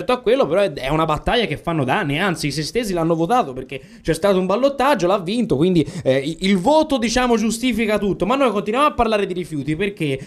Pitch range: 150-210 Hz